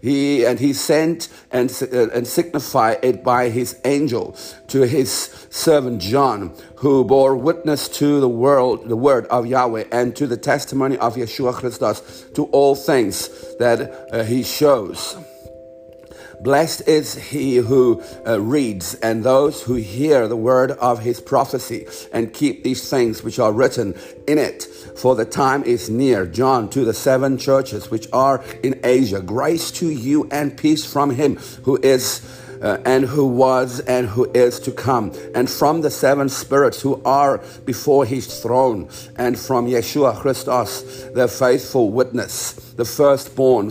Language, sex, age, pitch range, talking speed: English, male, 50-69, 120-140 Hz, 160 wpm